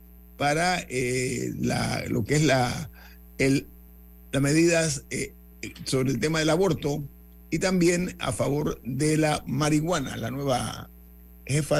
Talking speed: 125 wpm